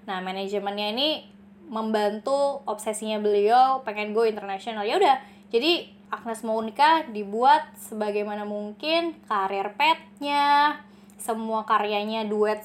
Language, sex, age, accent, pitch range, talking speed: Indonesian, female, 20-39, native, 205-280 Hz, 110 wpm